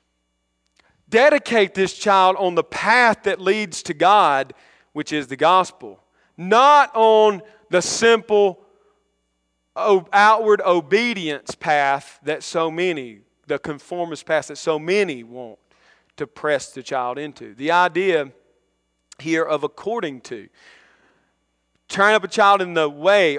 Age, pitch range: 40-59, 145-200 Hz